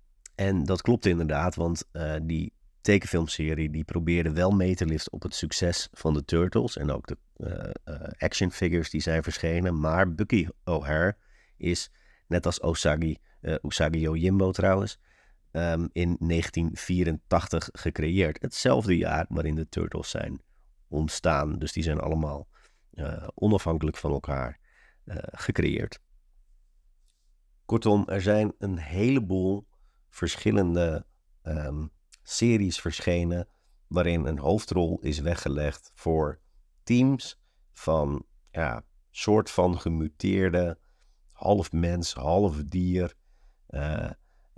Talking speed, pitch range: 115 wpm, 75-95 Hz